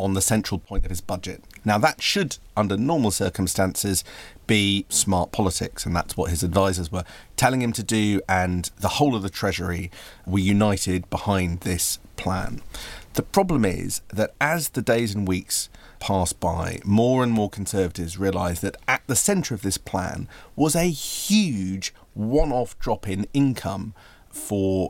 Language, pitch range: English, 95-115 Hz